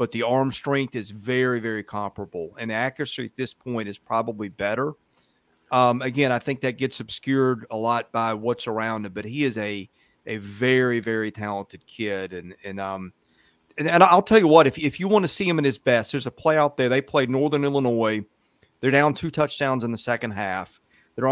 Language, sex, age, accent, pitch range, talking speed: English, male, 40-59, American, 115-140 Hz, 210 wpm